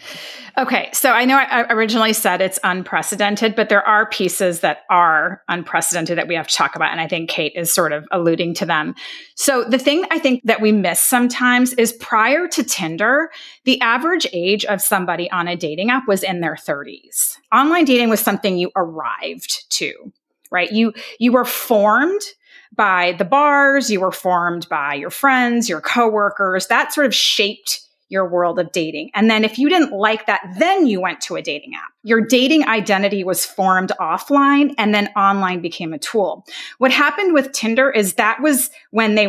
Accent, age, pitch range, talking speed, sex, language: American, 30-49, 190-260 Hz, 190 wpm, female, English